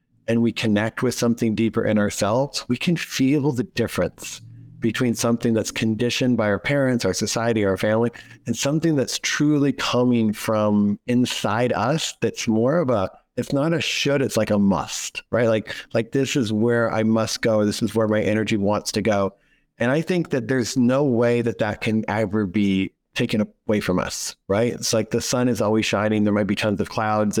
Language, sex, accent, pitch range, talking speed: English, male, American, 105-125 Hz, 200 wpm